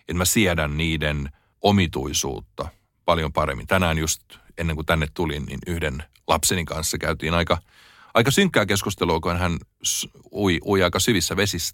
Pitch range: 80-100 Hz